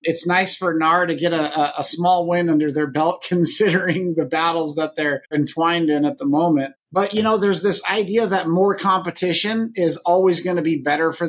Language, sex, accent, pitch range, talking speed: English, male, American, 150-185 Hz, 205 wpm